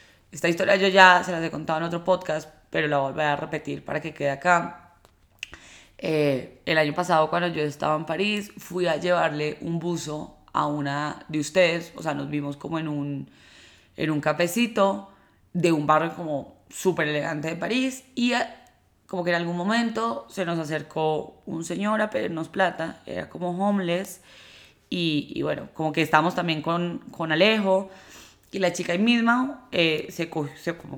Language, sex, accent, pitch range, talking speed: Spanish, female, Colombian, 150-185 Hz, 175 wpm